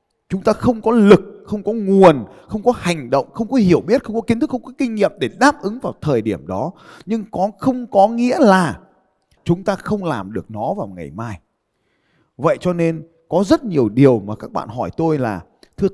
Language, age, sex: Vietnamese, 20-39, male